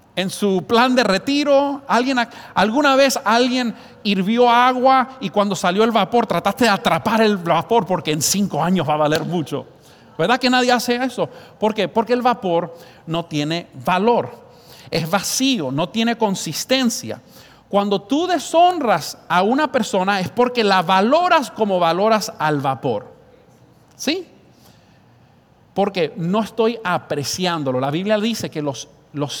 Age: 50-69